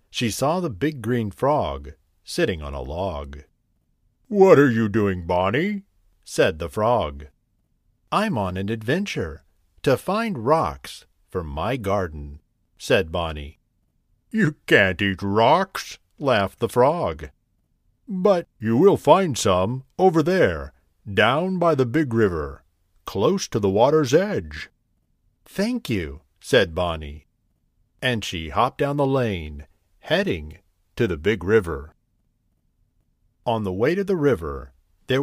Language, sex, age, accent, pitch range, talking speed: English, male, 50-69, American, 90-135 Hz, 130 wpm